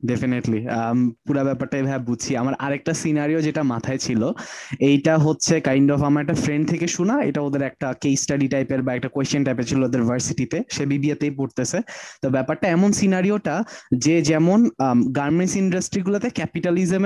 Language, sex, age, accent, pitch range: Bengali, male, 20-39, native, 135-180 Hz